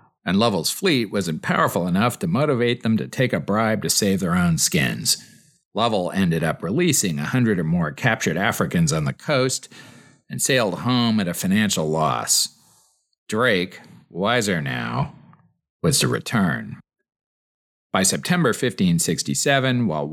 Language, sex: English, male